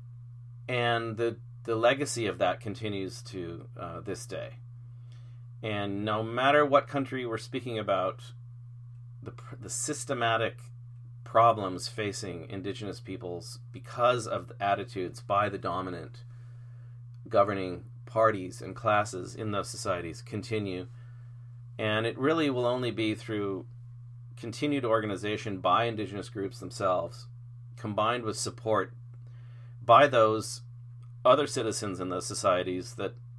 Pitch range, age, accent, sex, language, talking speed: 105-120 Hz, 40-59, American, male, English, 115 wpm